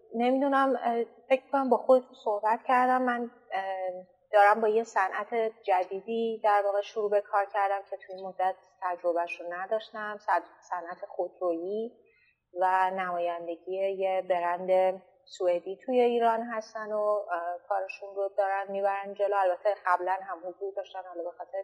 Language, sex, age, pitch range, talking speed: Persian, female, 30-49, 185-230 Hz, 135 wpm